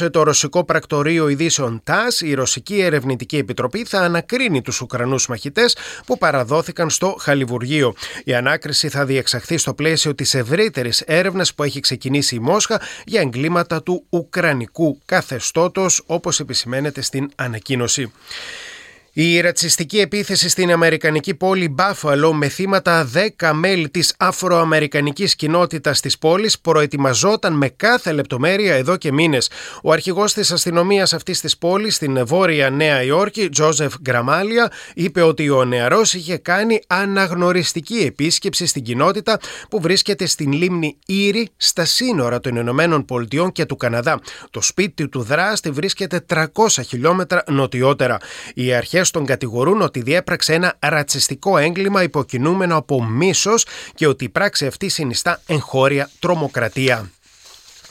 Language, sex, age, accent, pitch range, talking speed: Greek, male, 30-49, native, 140-185 Hz, 135 wpm